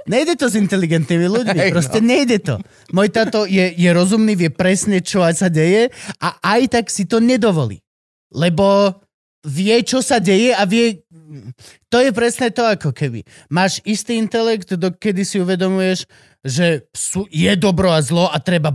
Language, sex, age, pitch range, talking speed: Slovak, male, 30-49, 135-200 Hz, 160 wpm